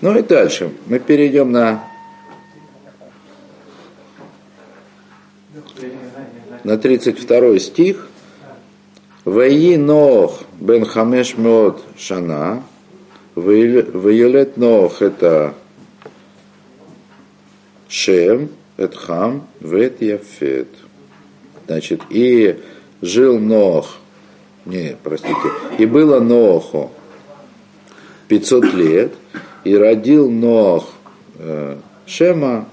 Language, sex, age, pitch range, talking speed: Russian, male, 50-69, 90-125 Hz, 70 wpm